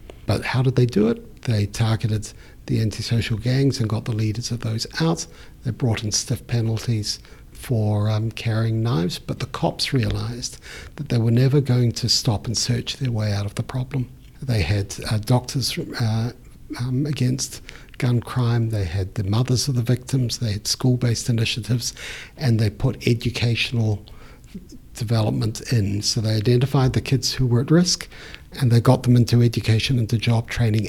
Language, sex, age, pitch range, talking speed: English, male, 60-79, 110-125 Hz, 175 wpm